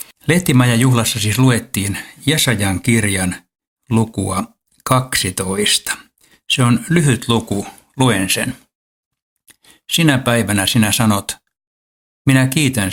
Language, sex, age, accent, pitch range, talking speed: Finnish, male, 60-79, native, 100-125 Hz, 95 wpm